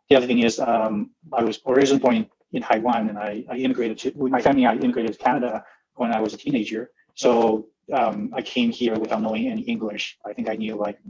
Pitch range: 110-130 Hz